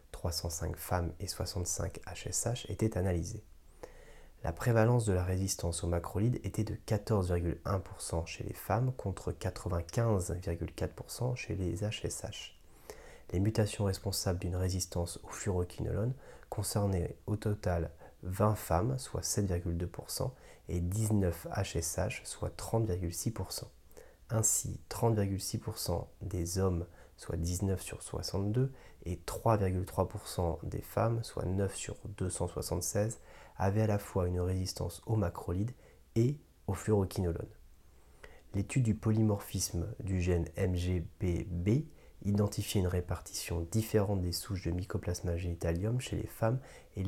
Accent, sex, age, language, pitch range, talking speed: French, male, 30-49, French, 85-110 Hz, 115 wpm